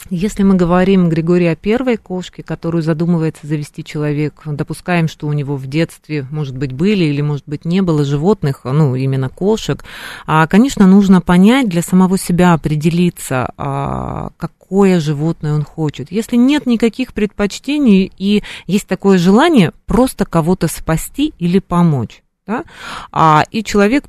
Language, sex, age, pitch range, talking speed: Russian, female, 30-49, 150-190 Hz, 140 wpm